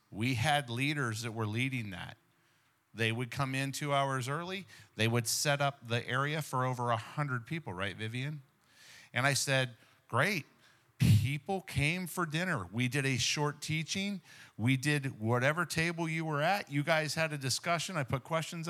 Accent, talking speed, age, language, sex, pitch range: American, 175 wpm, 50-69, English, male, 120-160 Hz